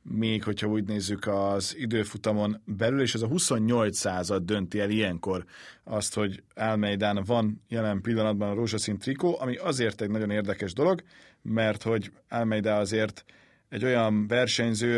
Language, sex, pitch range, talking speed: Hungarian, male, 105-125 Hz, 150 wpm